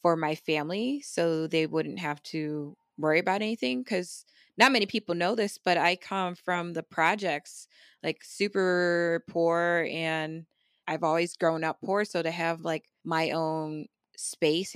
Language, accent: English, American